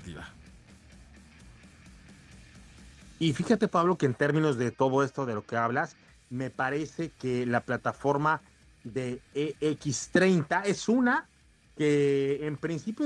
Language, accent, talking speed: Spanish, Mexican, 120 wpm